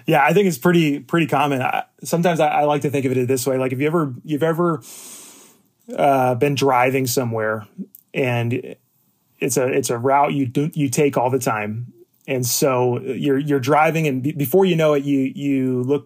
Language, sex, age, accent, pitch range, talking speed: English, male, 30-49, American, 120-145 Hz, 200 wpm